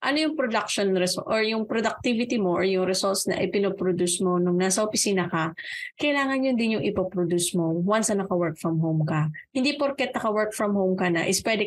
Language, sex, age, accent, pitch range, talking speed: Filipino, female, 20-39, native, 180-240 Hz, 200 wpm